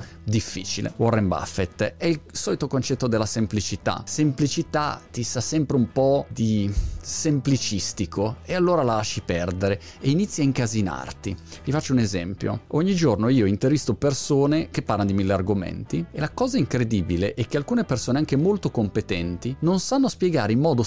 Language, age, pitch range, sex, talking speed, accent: Italian, 30-49, 100-150 Hz, male, 160 wpm, native